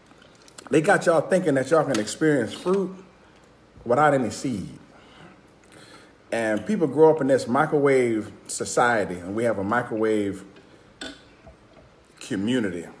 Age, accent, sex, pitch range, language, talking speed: 40-59, American, male, 100-160 Hz, English, 120 wpm